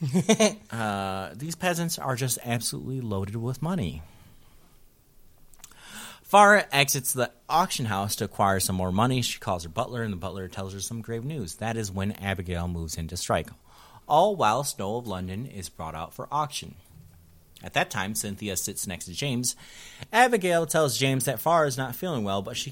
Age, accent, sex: 30-49, American, male